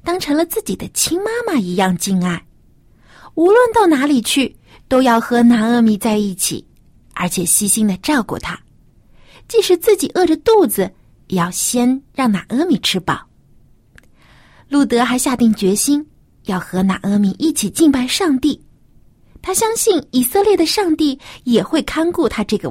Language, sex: Chinese, female